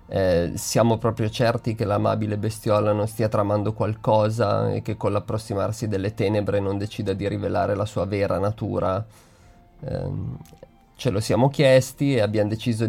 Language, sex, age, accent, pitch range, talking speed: Italian, male, 20-39, native, 100-115 Hz, 155 wpm